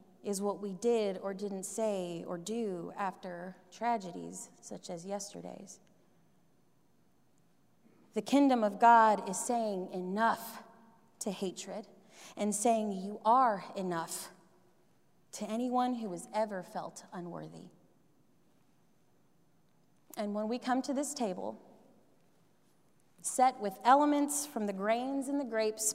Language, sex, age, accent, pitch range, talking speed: English, female, 30-49, American, 195-240 Hz, 120 wpm